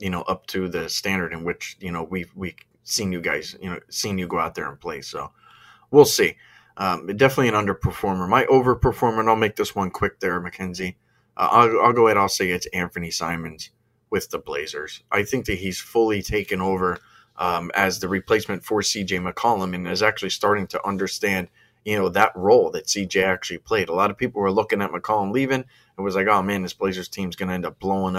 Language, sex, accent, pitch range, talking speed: English, male, American, 90-105 Hz, 220 wpm